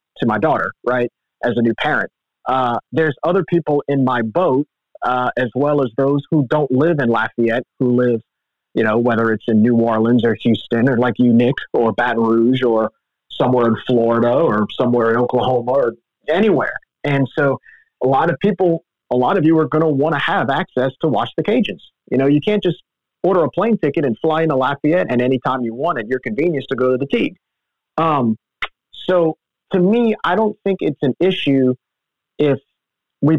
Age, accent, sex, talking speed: 30-49, American, male, 200 wpm